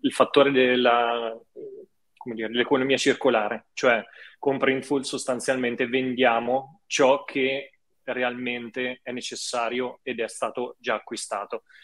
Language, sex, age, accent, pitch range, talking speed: Italian, male, 20-39, native, 115-135 Hz, 110 wpm